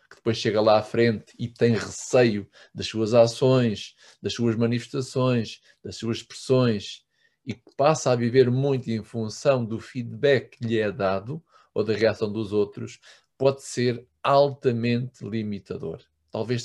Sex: male